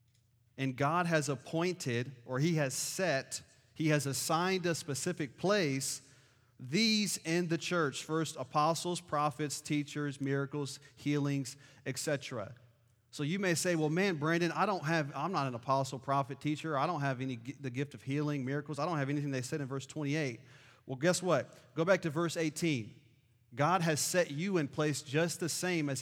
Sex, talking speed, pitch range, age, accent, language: male, 180 wpm, 125-160 Hz, 40-59, American, English